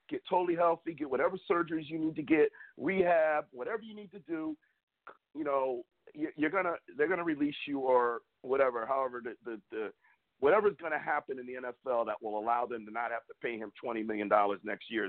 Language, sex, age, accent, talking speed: English, male, 50-69, American, 205 wpm